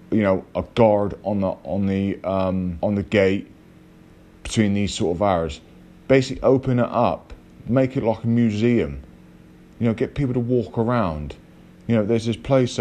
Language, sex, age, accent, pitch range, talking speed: English, male, 30-49, British, 90-120 Hz, 180 wpm